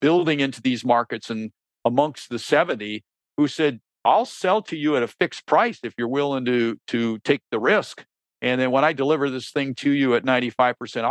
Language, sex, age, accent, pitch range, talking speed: English, male, 50-69, American, 115-130 Hz, 200 wpm